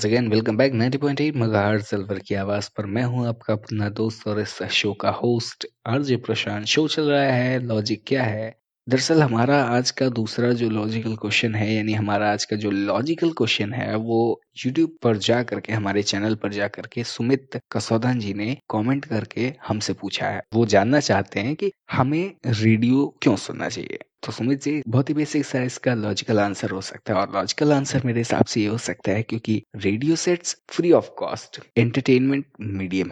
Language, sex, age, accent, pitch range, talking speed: Hindi, male, 20-39, native, 110-135 Hz, 135 wpm